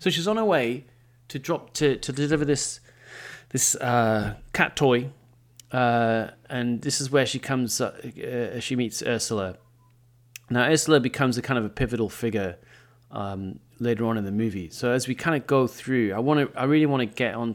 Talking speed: 195 wpm